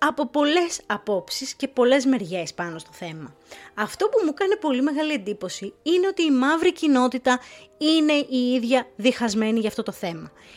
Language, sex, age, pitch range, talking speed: Greek, female, 20-39, 205-295 Hz, 165 wpm